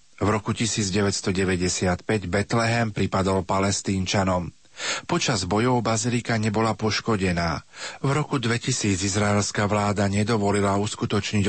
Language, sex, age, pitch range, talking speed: Slovak, male, 40-59, 95-110 Hz, 95 wpm